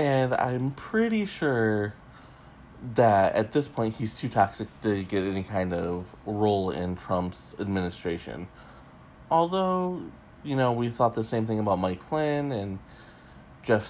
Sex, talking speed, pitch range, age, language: male, 145 wpm, 95-130 Hz, 20-39, English